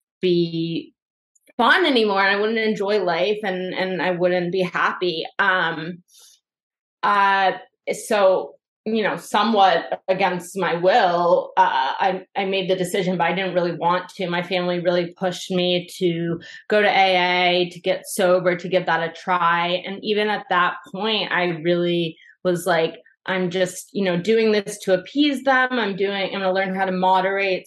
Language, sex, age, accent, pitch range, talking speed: English, female, 20-39, American, 180-205 Hz, 170 wpm